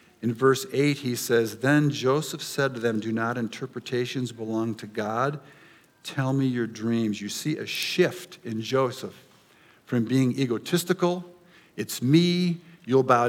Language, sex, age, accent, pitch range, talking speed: English, male, 50-69, American, 110-145 Hz, 150 wpm